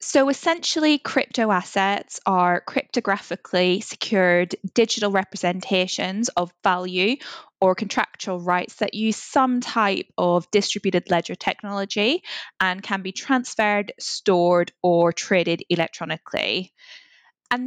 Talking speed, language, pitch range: 105 wpm, English, 185-240 Hz